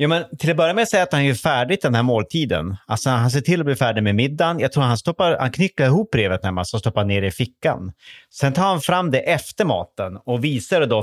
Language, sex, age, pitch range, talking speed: Swedish, male, 30-49, 100-130 Hz, 260 wpm